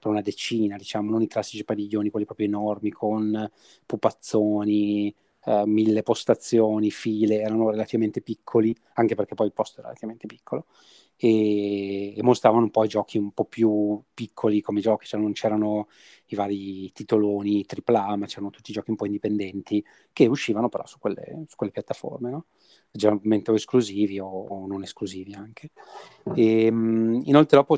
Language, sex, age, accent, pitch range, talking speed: Italian, male, 30-49, native, 105-115 Hz, 150 wpm